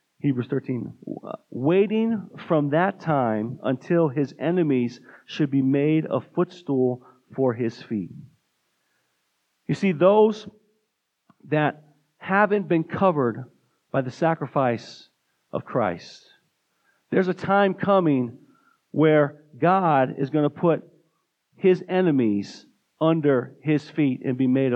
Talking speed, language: 115 wpm, English